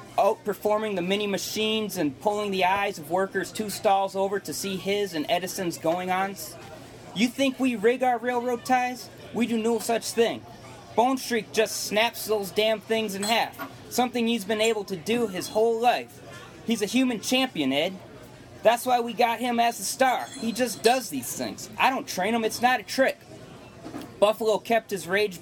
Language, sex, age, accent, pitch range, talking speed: English, male, 30-49, American, 175-225 Hz, 185 wpm